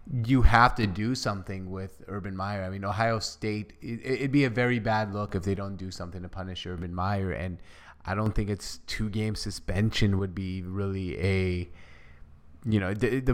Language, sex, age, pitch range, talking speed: English, male, 20-39, 100-125 Hz, 190 wpm